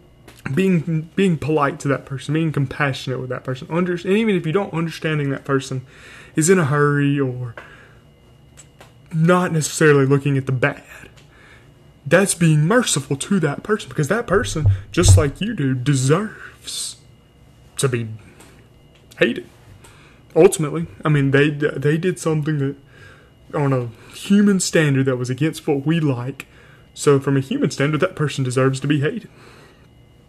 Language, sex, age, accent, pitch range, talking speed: English, male, 20-39, American, 130-160 Hz, 150 wpm